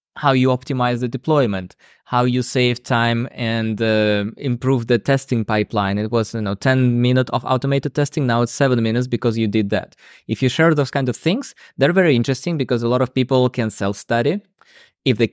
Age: 20-39